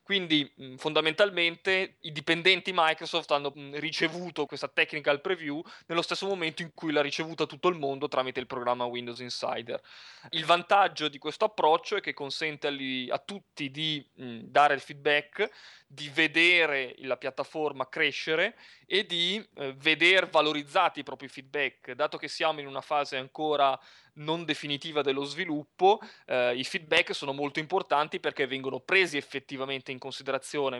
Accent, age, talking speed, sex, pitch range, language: native, 20-39, 145 wpm, male, 135-160 Hz, Italian